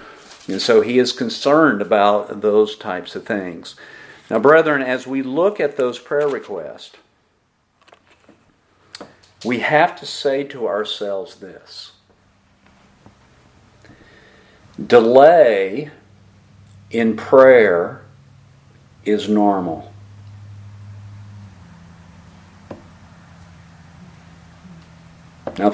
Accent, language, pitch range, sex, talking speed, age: American, English, 85-140 Hz, male, 75 wpm, 50-69